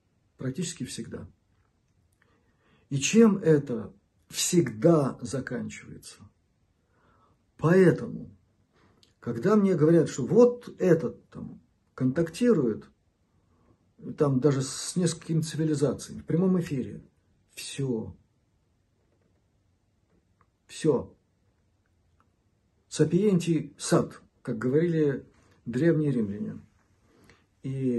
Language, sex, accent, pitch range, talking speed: Russian, male, native, 100-145 Hz, 70 wpm